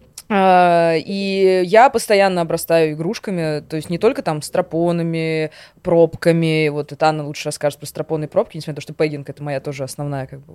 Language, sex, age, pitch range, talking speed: Russian, female, 20-39, 155-190 Hz, 175 wpm